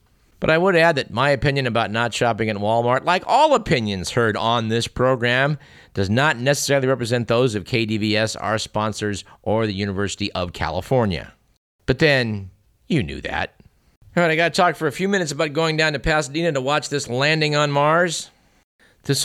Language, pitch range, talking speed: English, 105-145 Hz, 185 wpm